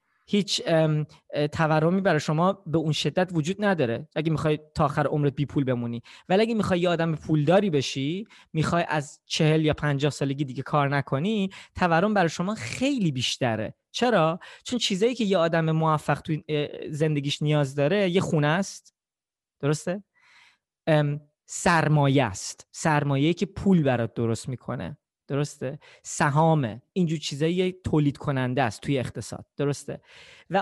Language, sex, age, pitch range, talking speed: Persian, male, 20-39, 145-195 Hz, 140 wpm